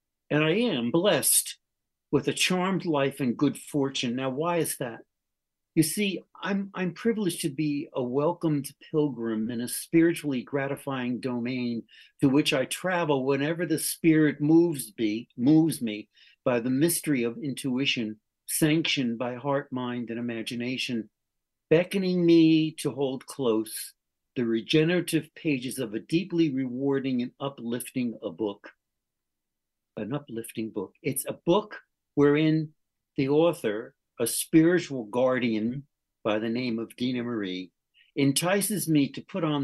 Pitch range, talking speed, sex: 120-155 Hz, 140 wpm, male